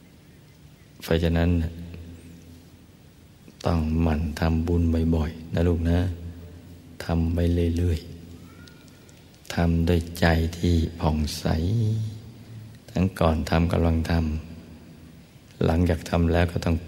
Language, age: Thai, 60-79